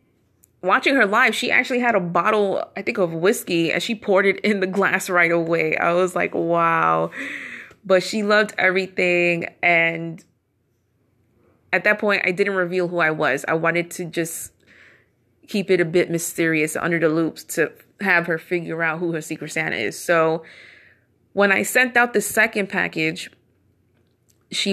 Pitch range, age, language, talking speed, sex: 160-195 Hz, 20-39, English, 170 wpm, female